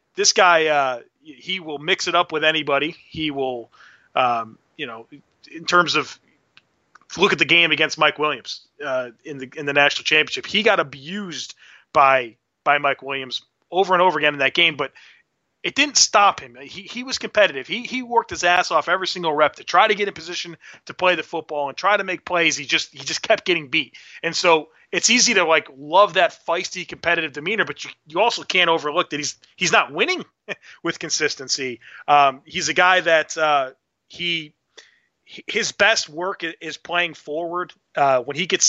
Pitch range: 145-180 Hz